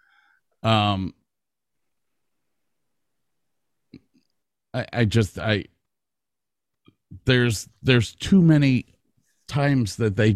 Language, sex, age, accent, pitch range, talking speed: English, male, 50-69, American, 100-125 Hz, 70 wpm